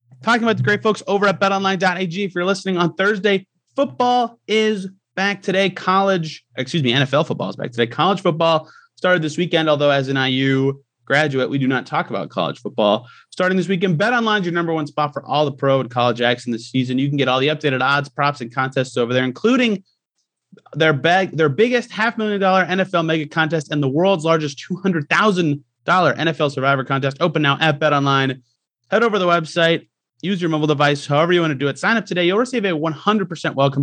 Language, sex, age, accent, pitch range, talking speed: English, male, 30-49, American, 140-190 Hz, 215 wpm